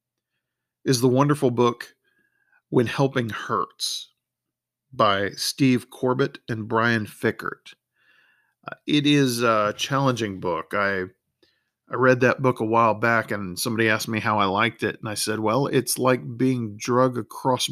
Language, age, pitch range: English, 40-59, 105-130 Hz